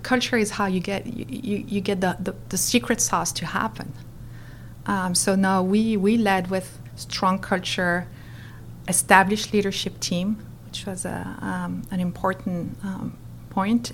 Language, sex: English, female